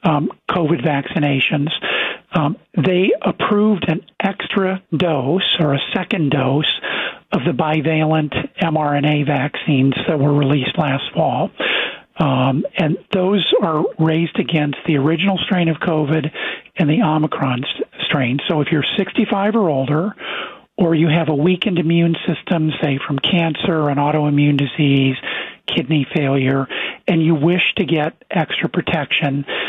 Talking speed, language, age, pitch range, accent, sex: 135 wpm, English, 50-69, 145-180 Hz, American, male